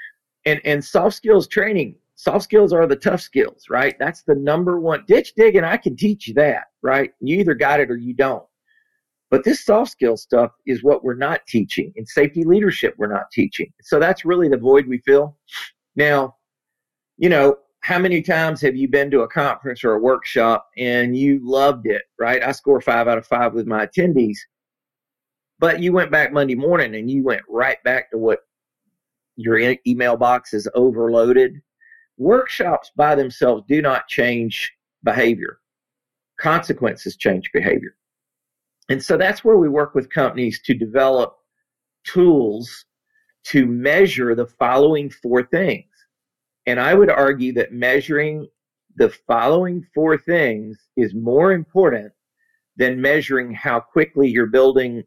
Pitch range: 125-180 Hz